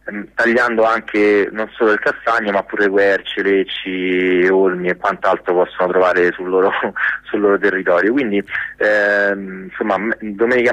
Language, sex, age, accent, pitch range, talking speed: Italian, male, 30-49, native, 95-110 Hz, 130 wpm